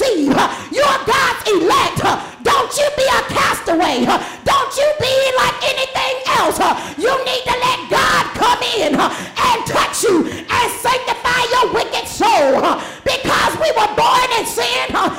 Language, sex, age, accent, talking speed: English, female, 50-69, American, 140 wpm